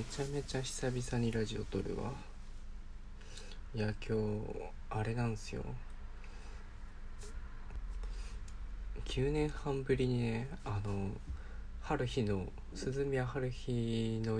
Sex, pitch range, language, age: male, 100-125 Hz, Japanese, 20-39